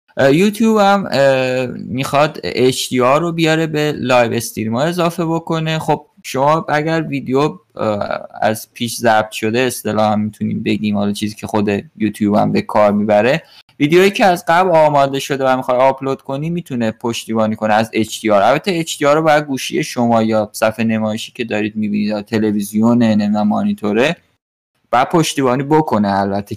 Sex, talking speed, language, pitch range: male, 160 wpm, Persian, 110-150 Hz